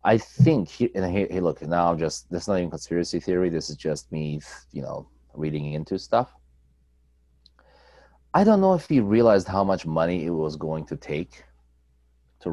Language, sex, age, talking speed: English, male, 30-49, 175 wpm